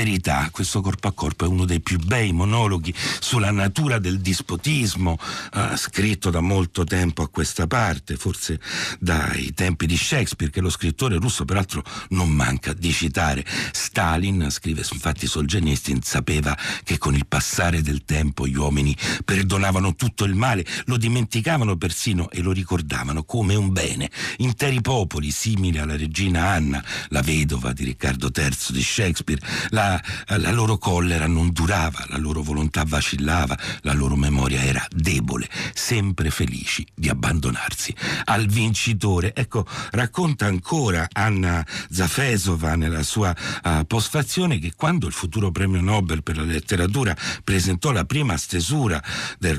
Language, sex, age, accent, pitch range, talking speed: Italian, male, 60-79, native, 75-105 Hz, 145 wpm